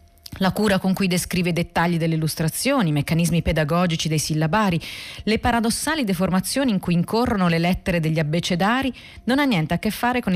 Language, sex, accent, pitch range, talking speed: Italian, female, native, 170-215 Hz, 180 wpm